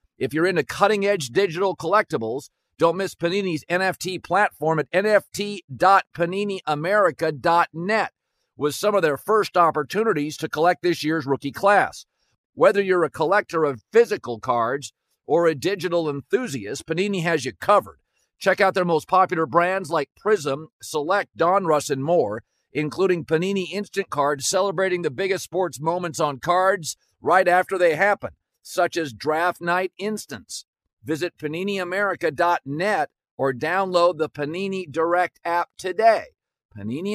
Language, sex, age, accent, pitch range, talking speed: English, male, 50-69, American, 155-195 Hz, 130 wpm